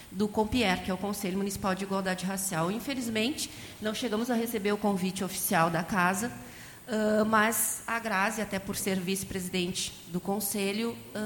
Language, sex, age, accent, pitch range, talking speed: Portuguese, female, 30-49, Brazilian, 190-225 Hz, 155 wpm